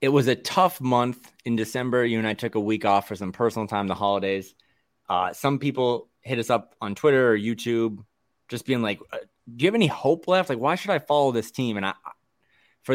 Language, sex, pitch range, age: English, male, 110-145 Hz, 20-39